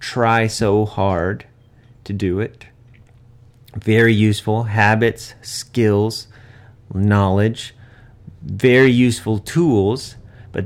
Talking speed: 85 wpm